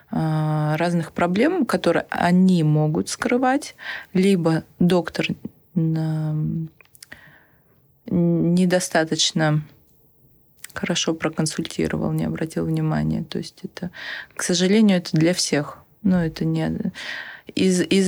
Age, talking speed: 20-39, 85 wpm